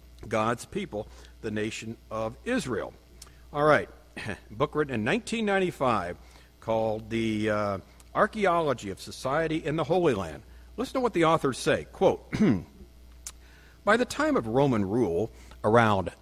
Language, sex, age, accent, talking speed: English, male, 60-79, American, 135 wpm